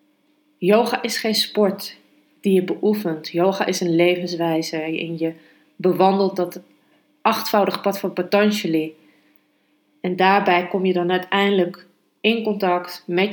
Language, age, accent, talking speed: Dutch, 30-49, Dutch, 125 wpm